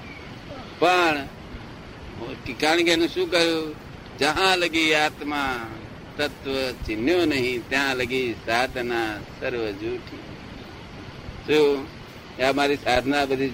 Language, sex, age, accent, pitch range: Gujarati, male, 60-79, native, 130-175 Hz